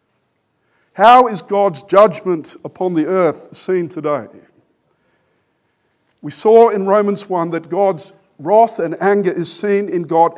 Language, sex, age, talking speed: English, male, 50-69, 135 wpm